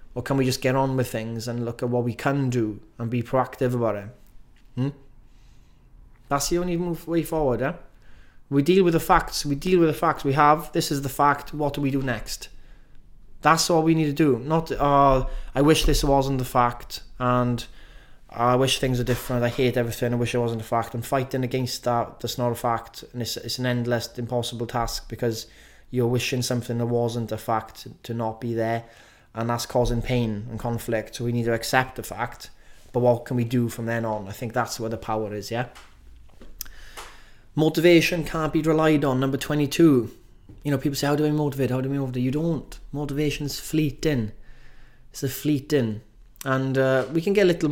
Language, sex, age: English, male, 20-39